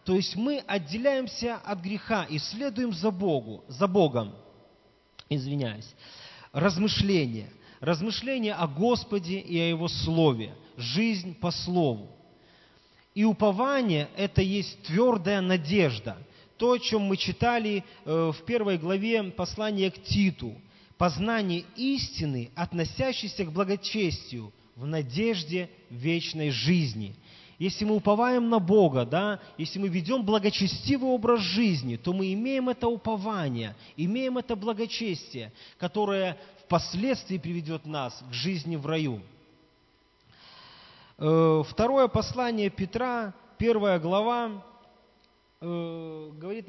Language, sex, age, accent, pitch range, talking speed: Russian, male, 30-49, native, 155-215 Hz, 105 wpm